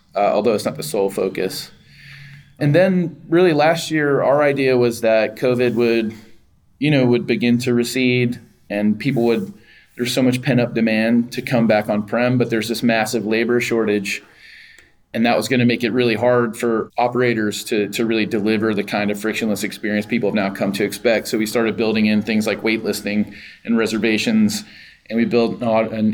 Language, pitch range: English, 110-125 Hz